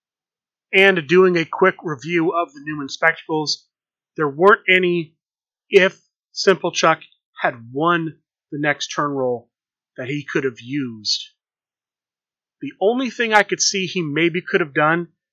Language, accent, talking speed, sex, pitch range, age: English, American, 145 wpm, male, 150-180 Hz, 30-49